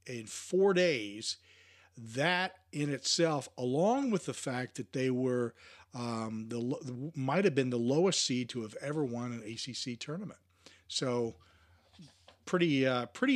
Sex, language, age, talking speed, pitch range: male, English, 40-59, 145 wpm, 110-145 Hz